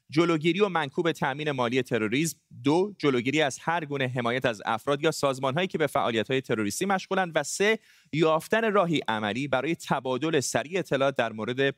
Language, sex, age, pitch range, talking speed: Persian, male, 30-49, 120-165 Hz, 165 wpm